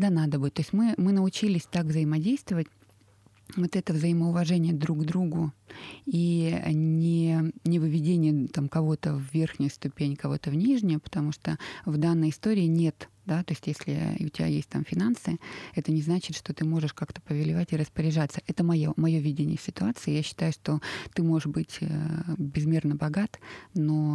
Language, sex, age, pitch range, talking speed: Russian, female, 20-39, 150-175 Hz, 165 wpm